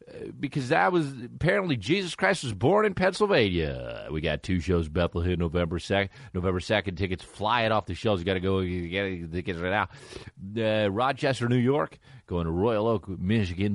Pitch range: 85-130 Hz